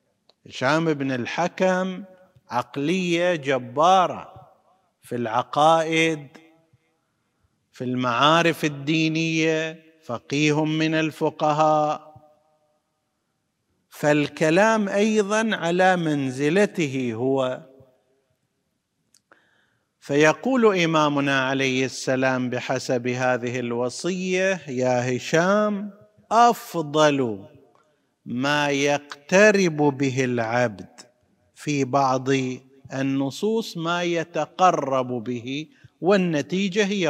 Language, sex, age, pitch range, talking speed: Arabic, male, 50-69, 130-165 Hz, 65 wpm